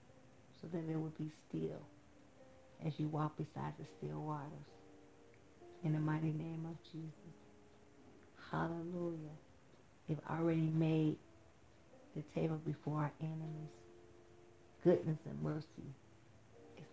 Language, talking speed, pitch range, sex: English, 110 wpm, 115-165 Hz, female